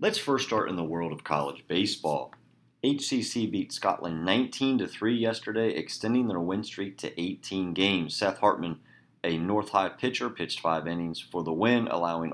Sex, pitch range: male, 80-110 Hz